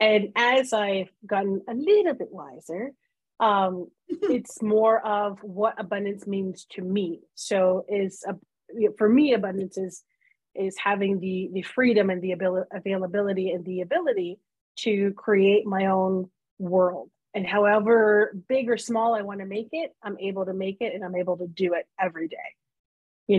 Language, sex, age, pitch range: English, female, 30-49, 185-215 Hz